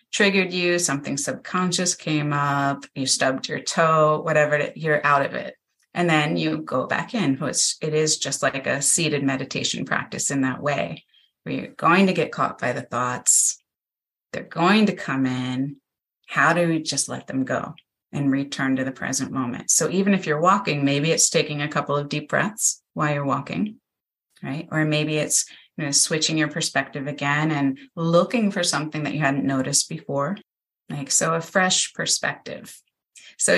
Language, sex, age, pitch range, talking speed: English, female, 30-49, 140-170 Hz, 180 wpm